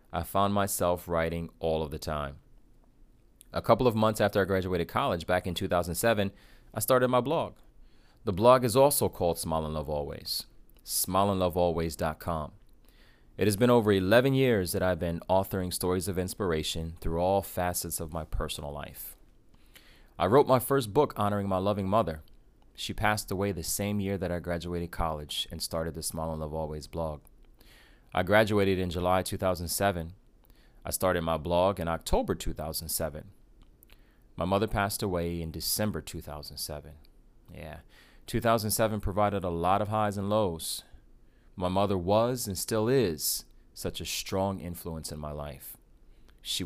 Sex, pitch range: male, 80-105 Hz